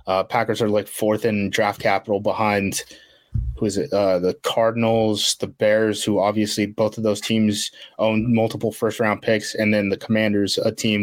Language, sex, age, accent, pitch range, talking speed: English, male, 20-39, American, 105-115 Hz, 185 wpm